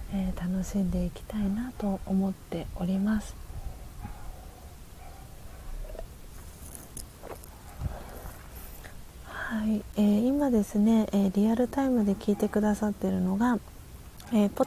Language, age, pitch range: Japanese, 40-59, 180-215 Hz